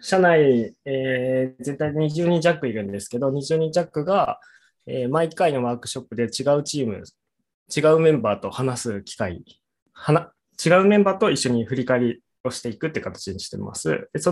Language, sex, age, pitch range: Japanese, male, 20-39, 120-175 Hz